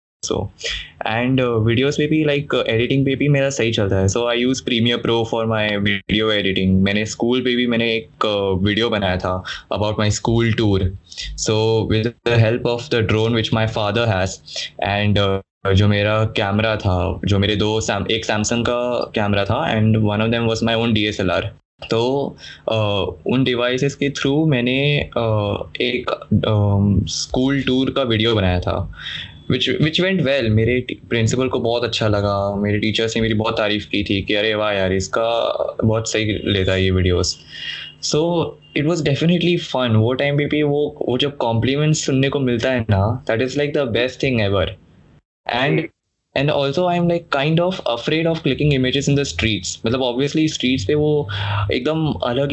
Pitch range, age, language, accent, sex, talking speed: 105-130 Hz, 20-39, Hindi, native, male, 170 wpm